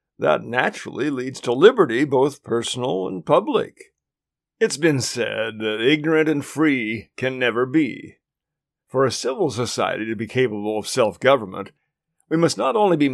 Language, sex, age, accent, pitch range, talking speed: English, male, 50-69, American, 125-165 Hz, 150 wpm